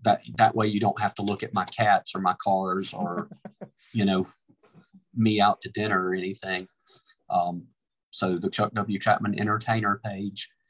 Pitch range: 100-115 Hz